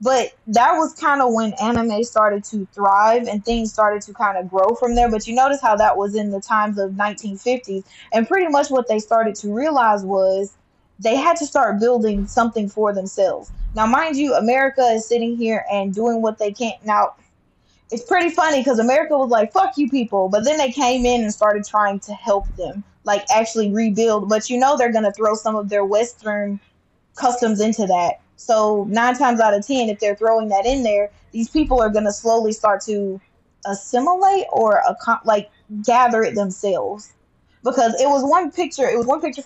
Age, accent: 10-29, American